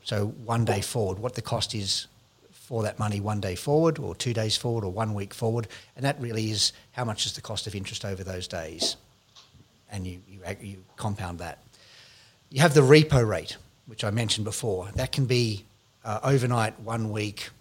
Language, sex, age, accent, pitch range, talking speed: English, male, 40-59, Australian, 105-130 Hz, 200 wpm